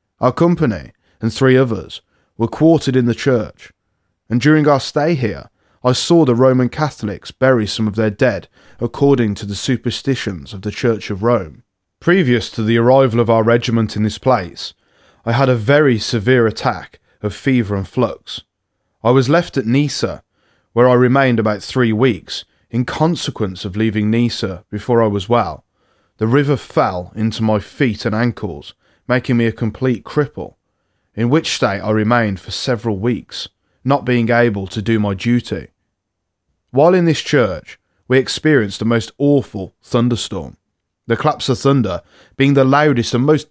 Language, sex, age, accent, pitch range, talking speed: English, male, 20-39, British, 105-130 Hz, 170 wpm